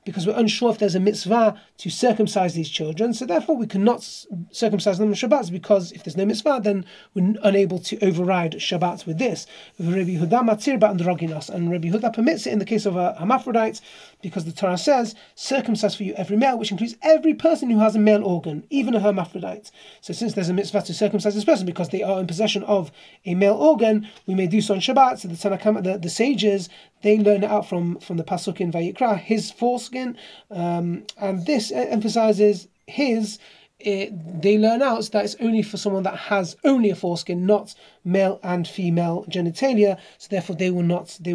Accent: British